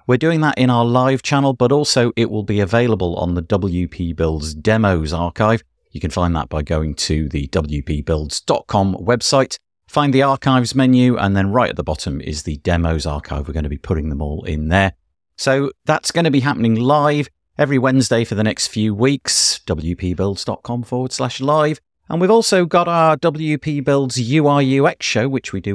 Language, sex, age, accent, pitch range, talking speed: English, male, 50-69, British, 90-140 Hz, 190 wpm